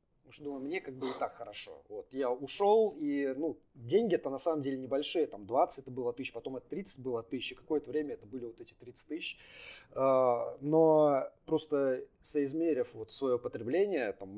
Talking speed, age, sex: 190 wpm, 20-39, male